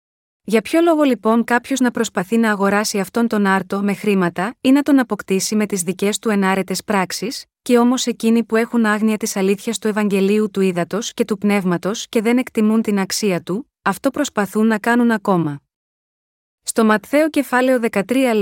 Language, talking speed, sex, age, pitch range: Greek, 175 wpm, female, 20-39, 200-240 Hz